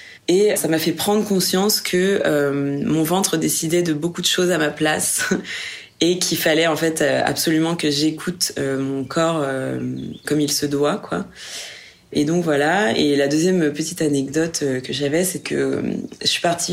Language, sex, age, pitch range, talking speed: French, female, 20-39, 145-170 Hz, 180 wpm